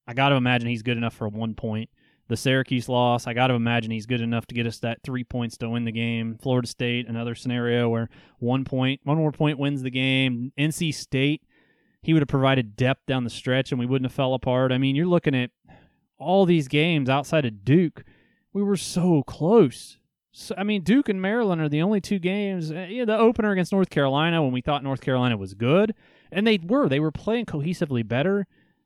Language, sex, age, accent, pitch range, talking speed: English, male, 30-49, American, 125-165 Hz, 225 wpm